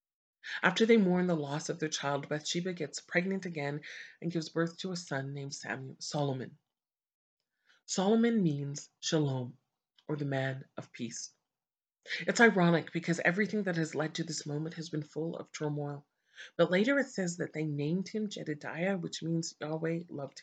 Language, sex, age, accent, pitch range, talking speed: English, female, 30-49, American, 150-180 Hz, 165 wpm